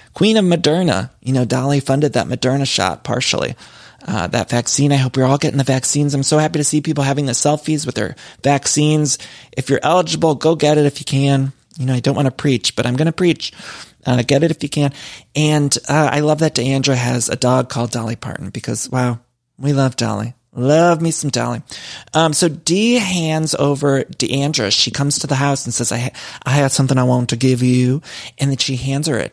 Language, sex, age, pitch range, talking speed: English, male, 30-49, 125-155 Hz, 225 wpm